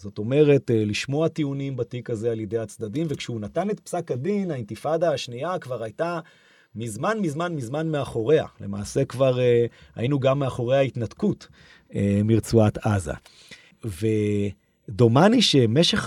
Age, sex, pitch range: 30-49, male, 110-155 Hz